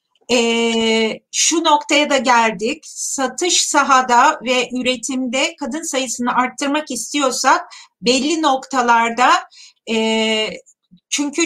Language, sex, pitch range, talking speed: Turkish, female, 235-295 Hz, 90 wpm